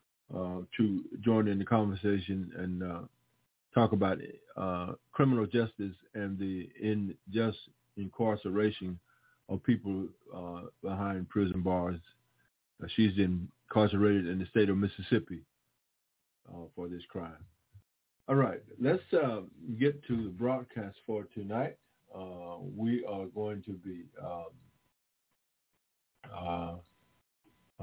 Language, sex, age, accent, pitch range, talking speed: English, male, 50-69, American, 90-115 Hz, 115 wpm